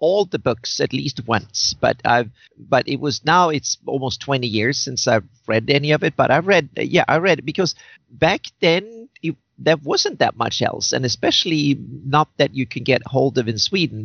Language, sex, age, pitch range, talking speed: English, male, 40-59, 115-150 Hz, 210 wpm